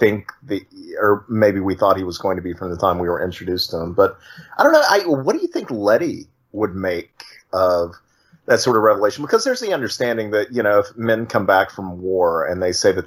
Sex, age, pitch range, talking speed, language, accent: male, 30-49, 90-135 Hz, 245 wpm, English, American